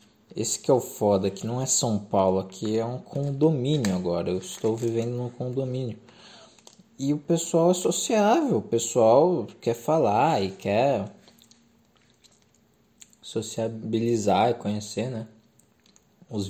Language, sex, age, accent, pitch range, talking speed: Portuguese, male, 20-39, Brazilian, 110-145 Hz, 130 wpm